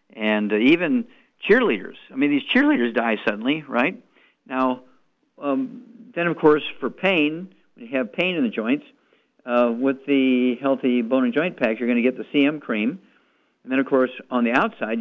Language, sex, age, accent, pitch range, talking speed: English, male, 50-69, American, 115-145 Hz, 190 wpm